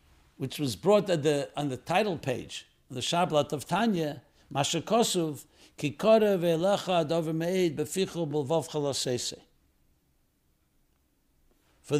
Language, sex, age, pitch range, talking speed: English, male, 60-79, 140-175 Hz, 105 wpm